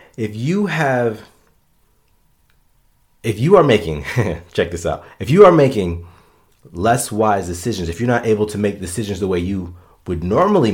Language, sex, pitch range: English, male, 85-110 Hz